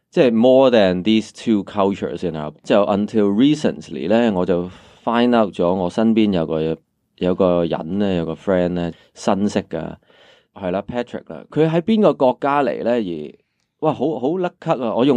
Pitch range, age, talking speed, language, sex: 90-125 Hz, 20-39, 40 wpm, English, male